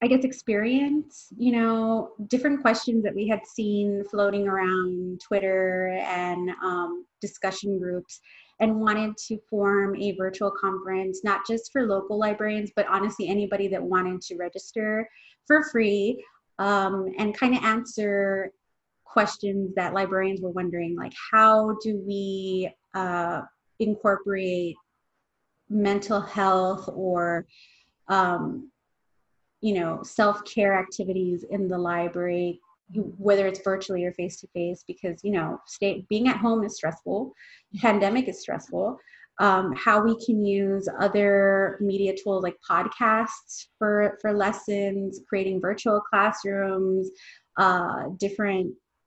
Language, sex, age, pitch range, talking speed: English, female, 30-49, 190-215 Hz, 120 wpm